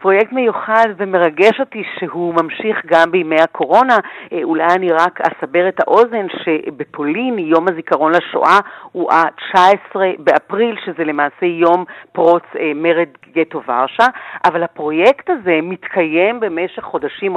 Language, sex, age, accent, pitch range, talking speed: Hebrew, female, 50-69, native, 160-220 Hz, 120 wpm